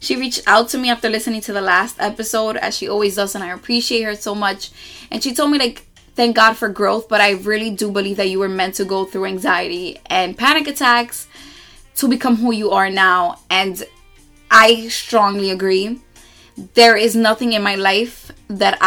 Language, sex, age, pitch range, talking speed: English, female, 20-39, 195-235 Hz, 200 wpm